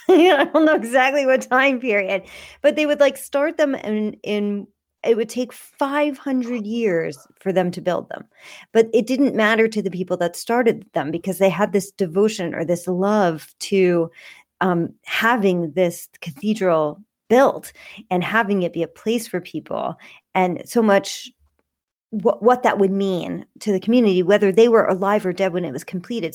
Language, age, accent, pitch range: English, 40-59, American, 180-230 Hz